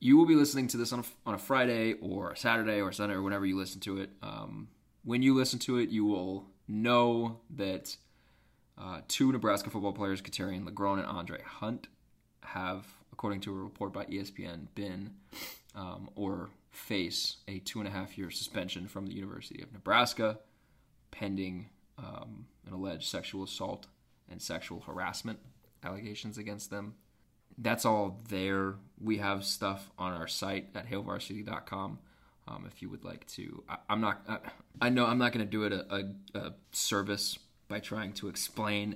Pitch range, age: 95-110 Hz, 20-39